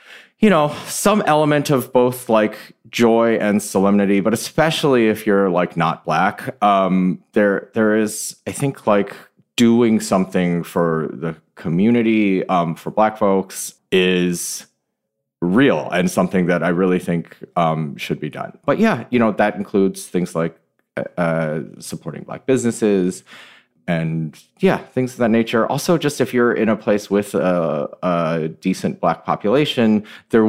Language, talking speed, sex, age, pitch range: English, 150 wpm, male, 30-49, 95-130 Hz